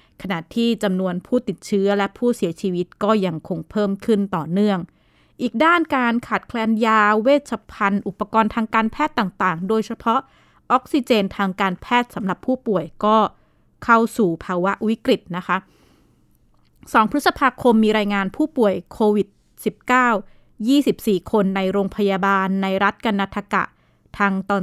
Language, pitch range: Thai, 195-240 Hz